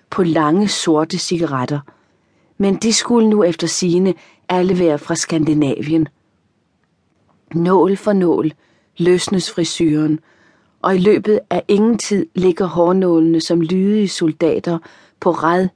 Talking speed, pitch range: 120 wpm, 160-190 Hz